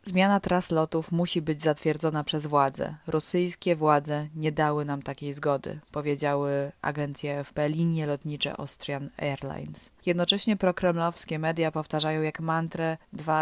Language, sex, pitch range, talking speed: Polish, female, 150-175 Hz, 130 wpm